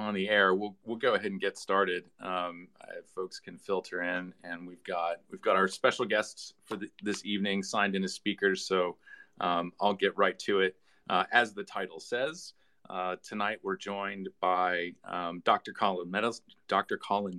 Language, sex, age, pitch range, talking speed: English, male, 40-59, 90-110 Hz, 190 wpm